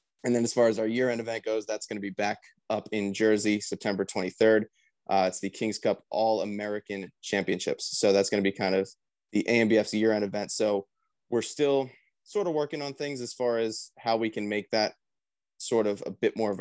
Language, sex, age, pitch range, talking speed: English, male, 20-39, 100-120 Hz, 225 wpm